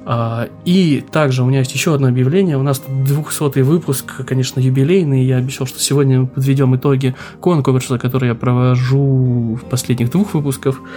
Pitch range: 125-140 Hz